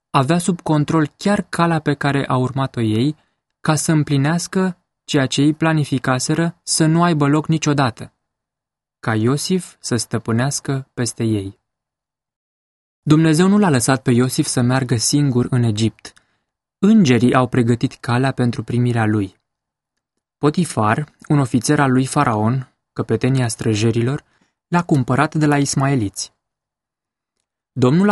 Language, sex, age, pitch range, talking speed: English, male, 20-39, 120-160 Hz, 130 wpm